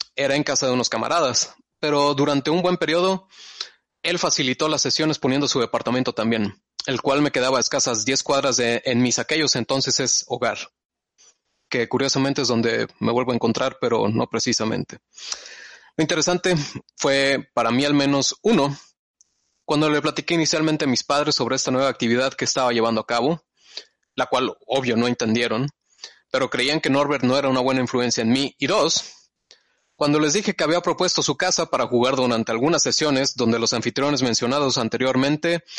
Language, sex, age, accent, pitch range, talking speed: Spanish, male, 20-39, Mexican, 115-145 Hz, 175 wpm